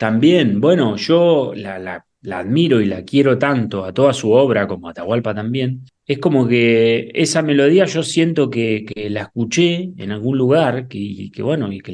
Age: 30-49